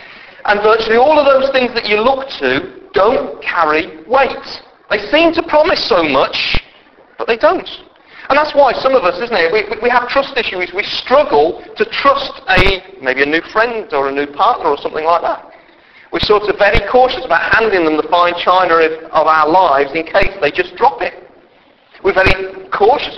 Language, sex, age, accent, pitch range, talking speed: English, male, 40-59, British, 180-265 Hz, 195 wpm